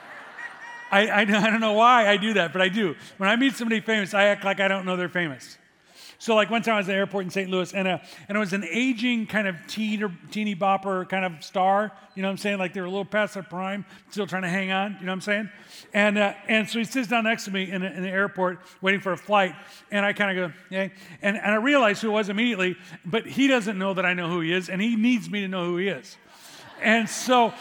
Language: English